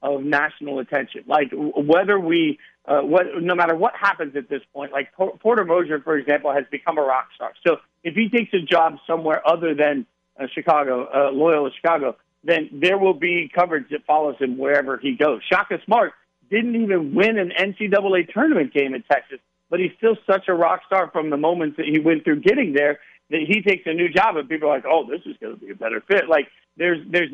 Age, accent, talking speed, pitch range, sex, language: 50-69, American, 215 wpm, 145-185 Hz, male, English